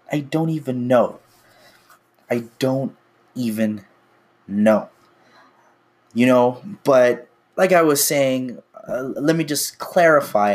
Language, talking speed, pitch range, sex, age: English, 115 wpm, 110-150 Hz, male, 20-39